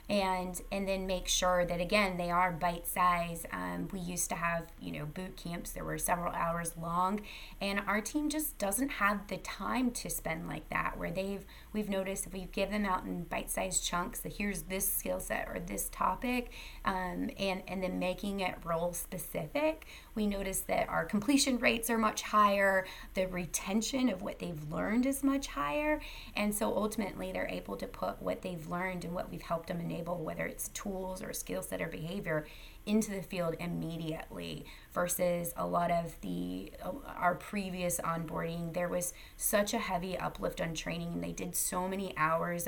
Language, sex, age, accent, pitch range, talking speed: English, female, 20-39, American, 175-220 Hz, 185 wpm